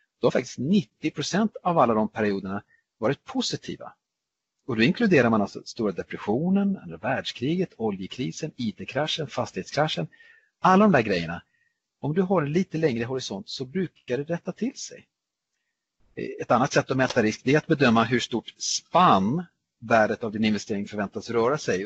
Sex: male